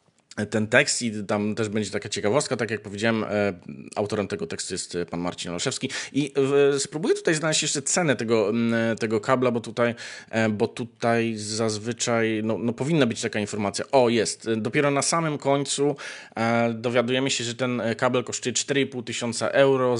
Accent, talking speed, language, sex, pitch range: native, 175 wpm, Polish, male, 115-135 Hz